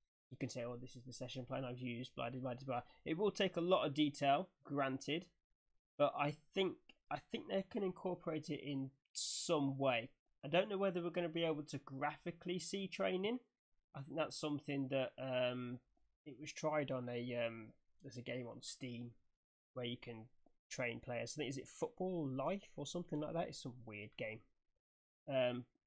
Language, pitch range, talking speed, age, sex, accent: English, 125-155 Hz, 195 wpm, 20-39, male, British